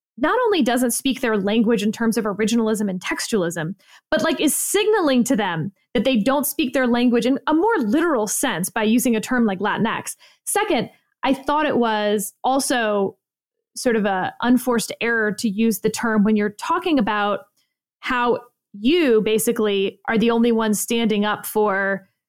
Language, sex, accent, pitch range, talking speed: English, female, American, 215-290 Hz, 170 wpm